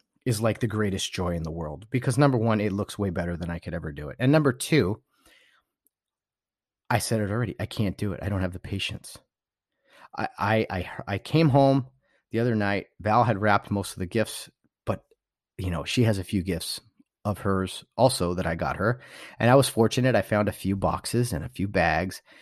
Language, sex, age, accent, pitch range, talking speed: English, male, 30-49, American, 100-135 Hz, 215 wpm